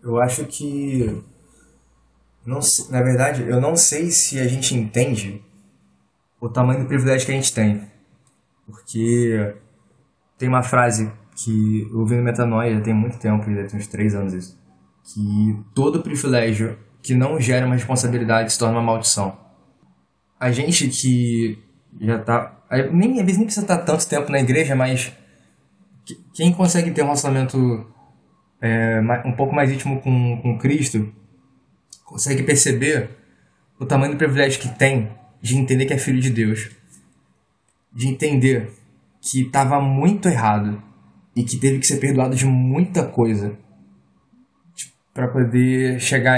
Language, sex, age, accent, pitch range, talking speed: Portuguese, male, 20-39, Brazilian, 110-135 Hz, 150 wpm